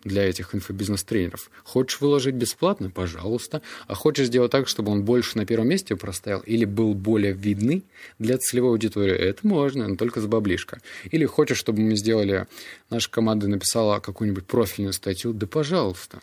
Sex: male